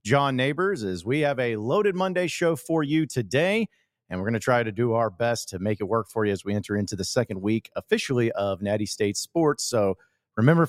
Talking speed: 230 wpm